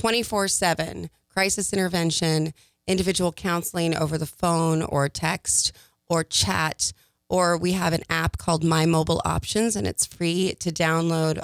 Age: 30-49